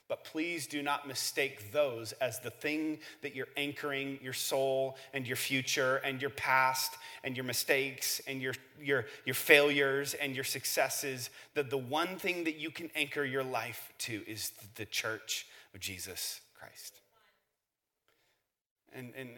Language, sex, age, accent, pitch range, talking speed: English, male, 30-49, American, 120-145 Hz, 155 wpm